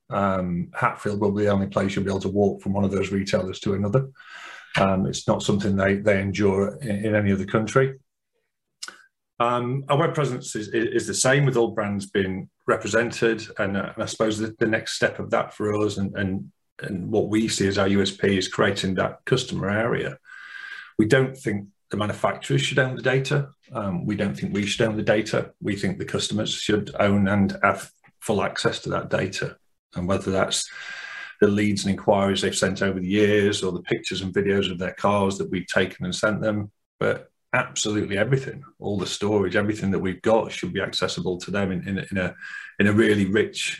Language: English